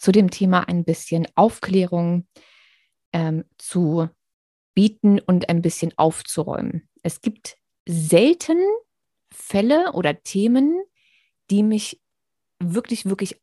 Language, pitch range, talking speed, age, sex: German, 170-230 Hz, 105 wpm, 20-39, female